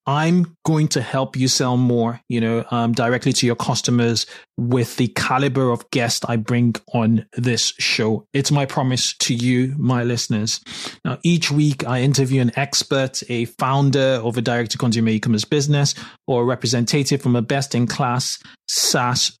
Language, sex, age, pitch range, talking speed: English, male, 20-39, 120-145 Hz, 160 wpm